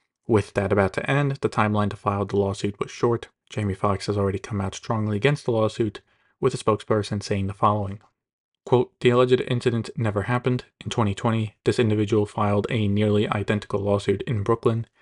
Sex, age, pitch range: male, 30-49, 100-120 Hz